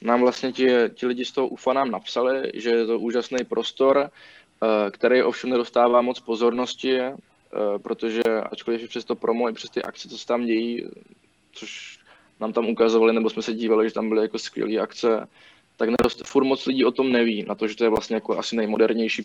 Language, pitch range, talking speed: Czech, 115-120 Hz, 205 wpm